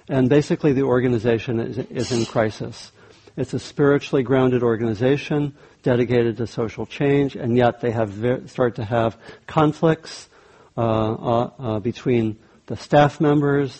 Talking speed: 145 wpm